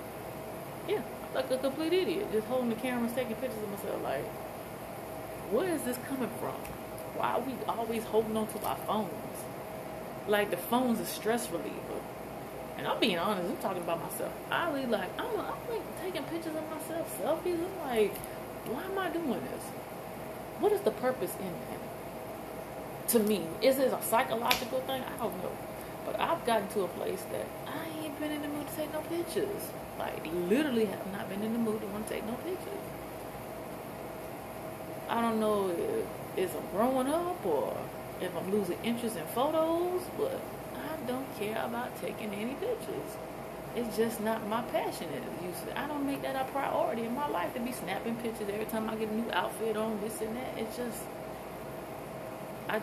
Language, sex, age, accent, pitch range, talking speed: English, female, 20-39, American, 215-300 Hz, 185 wpm